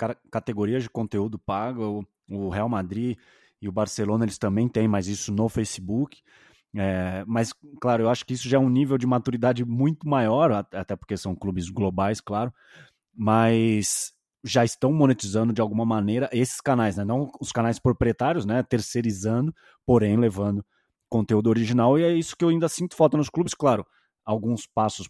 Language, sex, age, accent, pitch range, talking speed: Portuguese, male, 20-39, Brazilian, 100-125 Hz, 170 wpm